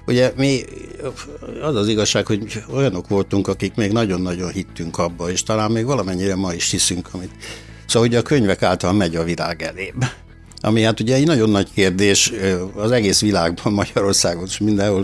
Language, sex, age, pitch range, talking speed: Hungarian, male, 60-79, 90-120 Hz, 170 wpm